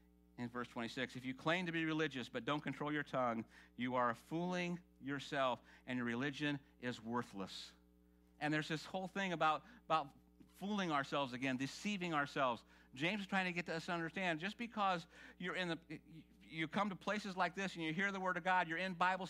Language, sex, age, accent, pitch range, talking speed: English, male, 50-69, American, 120-180 Hz, 200 wpm